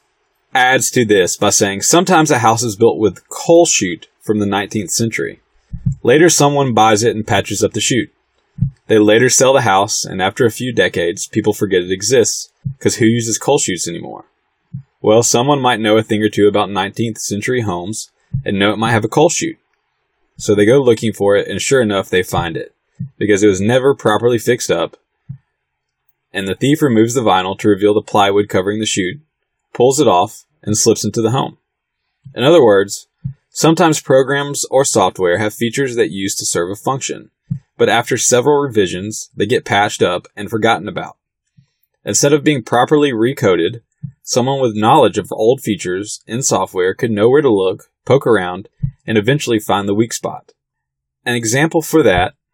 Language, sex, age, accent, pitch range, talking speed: English, male, 20-39, American, 105-140 Hz, 185 wpm